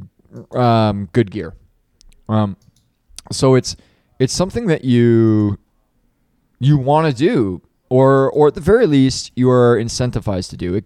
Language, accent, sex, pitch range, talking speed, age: English, American, male, 105-130 Hz, 145 wpm, 20-39